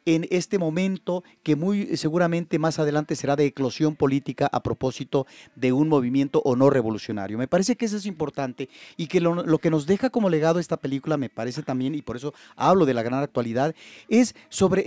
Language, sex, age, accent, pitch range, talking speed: Spanish, male, 40-59, Mexican, 135-180 Hz, 200 wpm